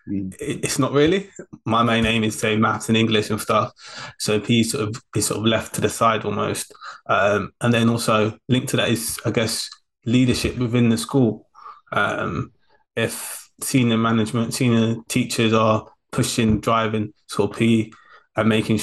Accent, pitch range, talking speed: British, 110-125 Hz, 170 wpm